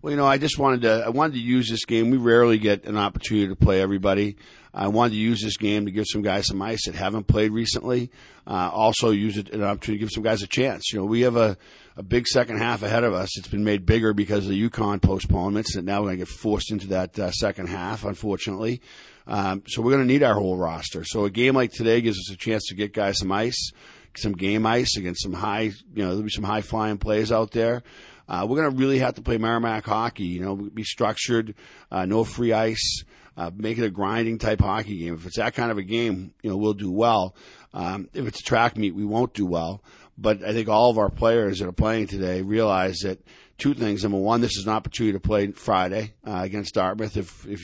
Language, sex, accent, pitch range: English, male, American, 95-115 Hz